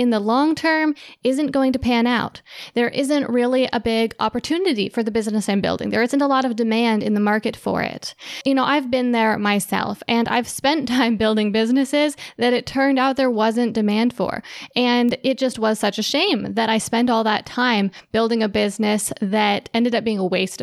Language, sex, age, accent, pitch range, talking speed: English, female, 10-29, American, 215-255 Hz, 210 wpm